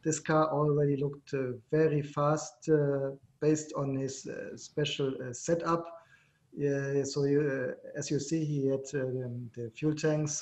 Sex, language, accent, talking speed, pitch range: male, English, German, 150 wpm, 140-155 Hz